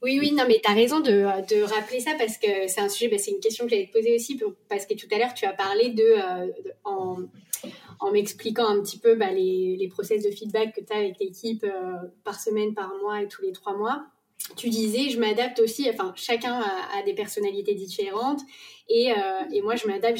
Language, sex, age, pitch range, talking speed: French, female, 20-39, 210-275 Hz, 240 wpm